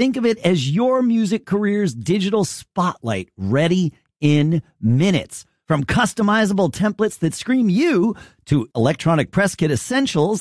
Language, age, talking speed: English, 40-59, 135 wpm